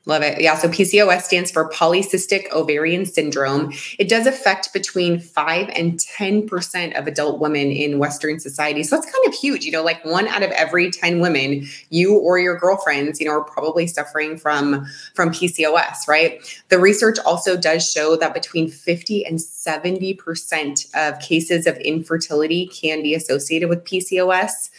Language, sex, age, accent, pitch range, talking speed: English, female, 20-39, American, 150-185 Hz, 165 wpm